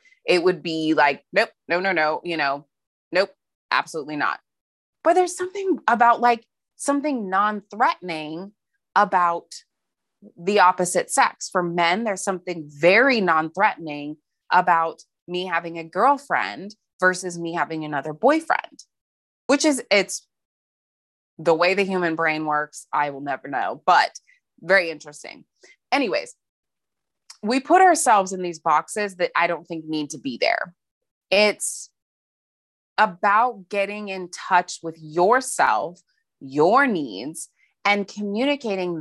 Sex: female